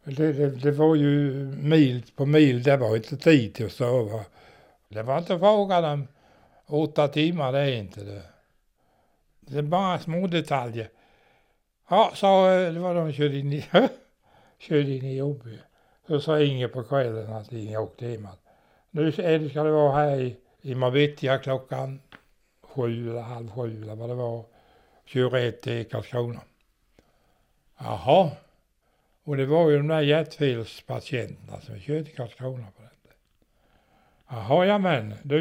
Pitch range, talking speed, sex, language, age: 120-155 Hz, 155 wpm, male, Swedish, 60-79